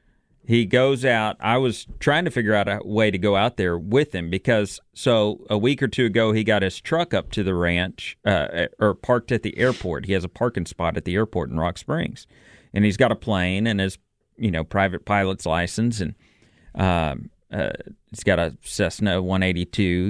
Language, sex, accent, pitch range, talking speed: English, male, American, 95-115 Hz, 205 wpm